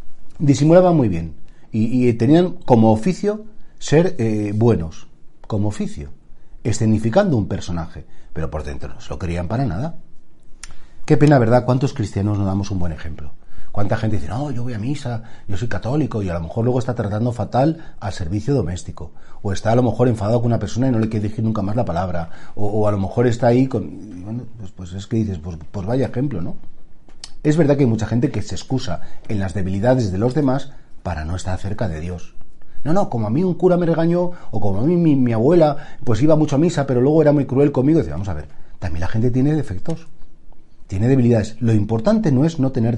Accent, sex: Spanish, male